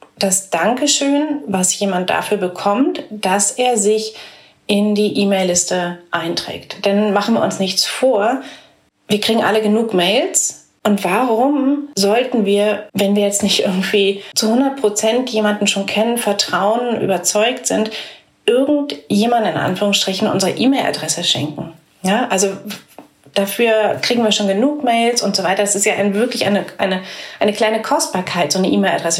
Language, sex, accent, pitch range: German, female, German, 195-230 Hz